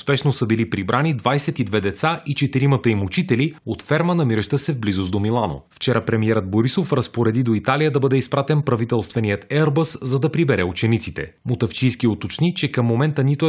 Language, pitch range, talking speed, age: Bulgarian, 115-150 Hz, 175 wpm, 30-49